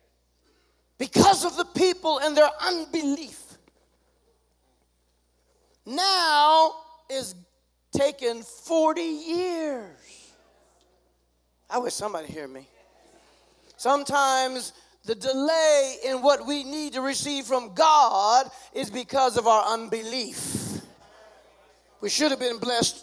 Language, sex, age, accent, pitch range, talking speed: English, male, 40-59, American, 195-295 Hz, 100 wpm